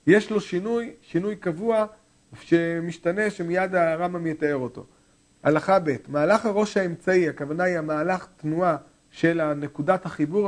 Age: 40-59